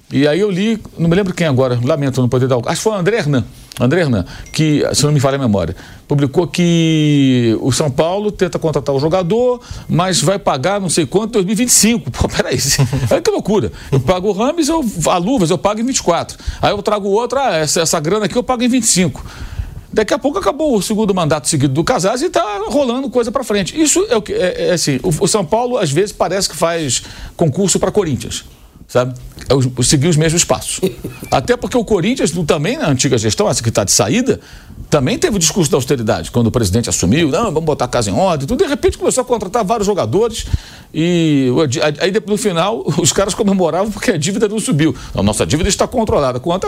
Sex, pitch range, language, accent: male, 135-220 Hz, Portuguese, Brazilian